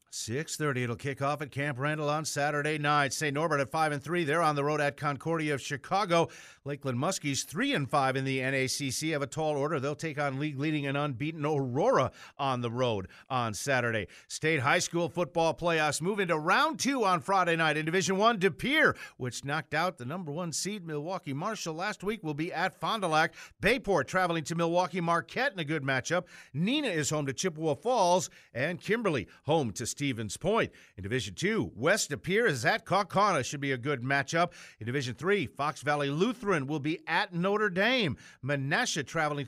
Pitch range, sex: 140-190 Hz, male